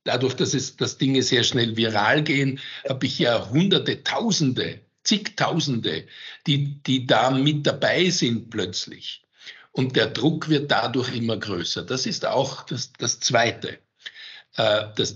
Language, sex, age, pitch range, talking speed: German, male, 60-79, 115-155 Hz, 145 wpm